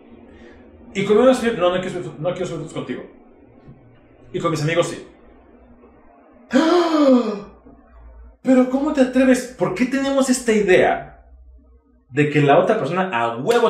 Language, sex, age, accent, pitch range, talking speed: Spanish, male, 30-49, Mexican, 155-255 Hz, 130 wpm